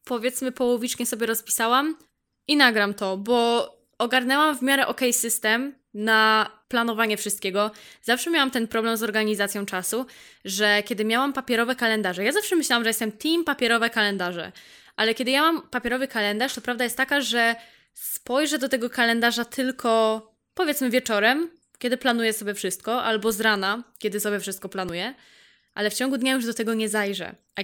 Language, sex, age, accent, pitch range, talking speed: Polish, female, 20-39, native, 215-265 Hz, 165 wpm